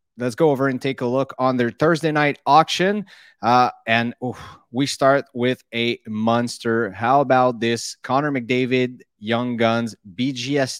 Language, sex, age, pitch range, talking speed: English, male, 30-49, 110-130 Hz, 155 wpm